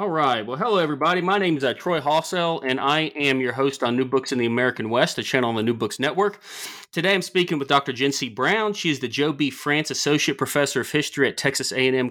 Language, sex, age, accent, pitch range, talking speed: English, male, 30-49, American, 130-170 Hz, 255 wpm